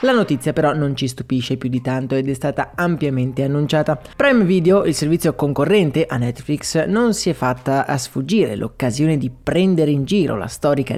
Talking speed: 185 wpm